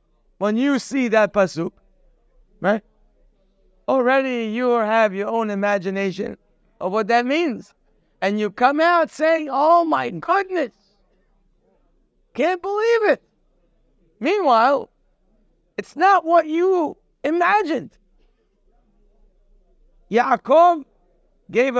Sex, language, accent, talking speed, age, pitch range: male, English, American, 95 wpm, 60-79, 205-315 Hz